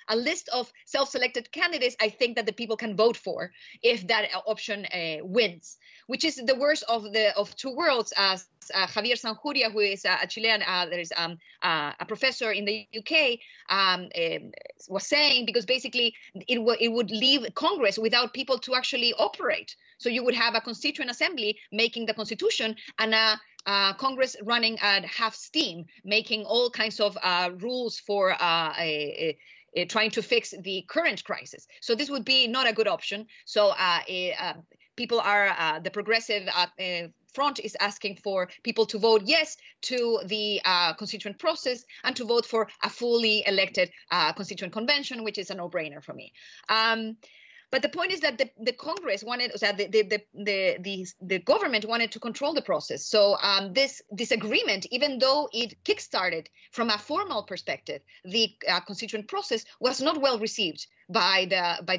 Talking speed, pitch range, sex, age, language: 190 wpm, 200-255 Hz, female, 30-49, English